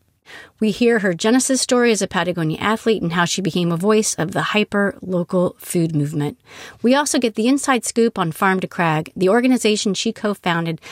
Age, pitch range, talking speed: 40-59, 175-245 Hz, 185 wpm